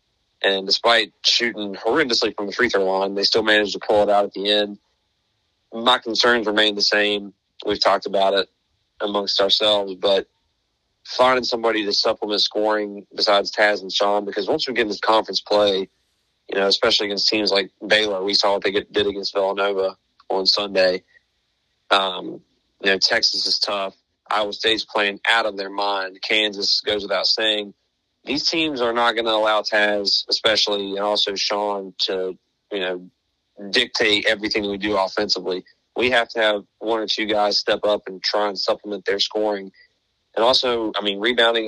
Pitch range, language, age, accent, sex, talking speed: 100-110 Hz, English, 30-49, American, male, 175 wpm